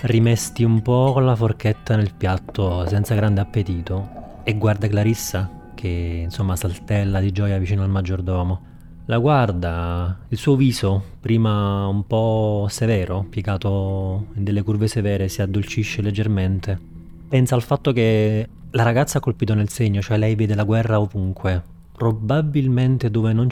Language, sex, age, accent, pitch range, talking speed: Italian, male, 30-49, native, 95-115 Hz, 145 wpm